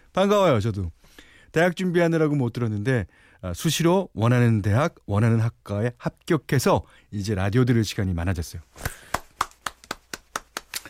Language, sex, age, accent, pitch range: Korean, male, 40-59, native, 95-135 Hz